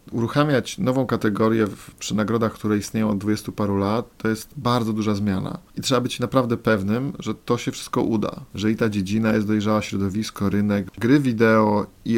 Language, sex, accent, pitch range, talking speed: Polish, male, native, 100-115 Hz, 185 wpm